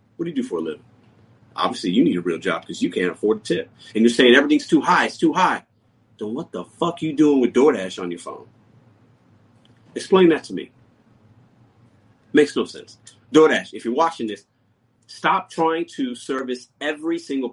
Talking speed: 200 wpm